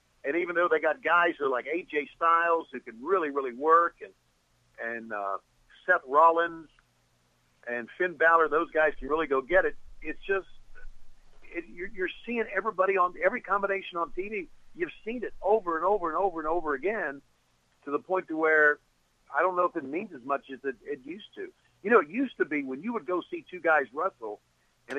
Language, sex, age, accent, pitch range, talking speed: English, male, 60-79, American, 145-220 Hz, 210 wpm